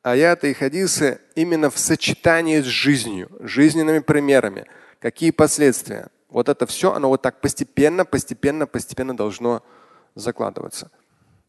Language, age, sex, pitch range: Russian, 30-49, male, 115-150 Hz